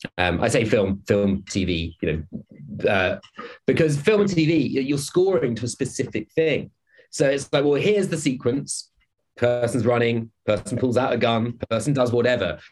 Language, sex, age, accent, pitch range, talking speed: English, male, 30-49, British, 105-140 Hz, 170 wpm